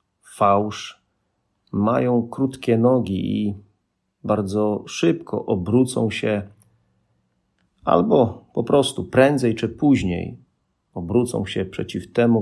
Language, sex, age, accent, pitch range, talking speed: Polish, male, 40-59, native, 95-130 Hz, 90 wpm